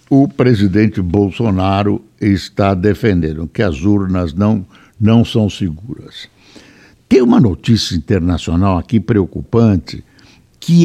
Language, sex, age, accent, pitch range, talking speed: Portuguese, male, 60-79, Brazilian, 105-165 Hz, 105 wpm